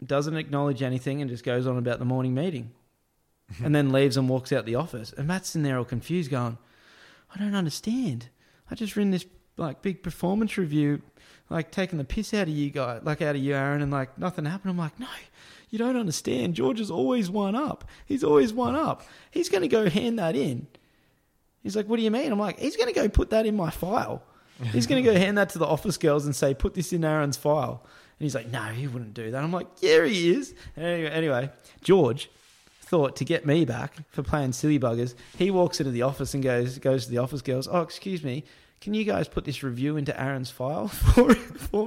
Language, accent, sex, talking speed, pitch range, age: English, Australian, male, 230 wpm, 130-185 Hz, 20-39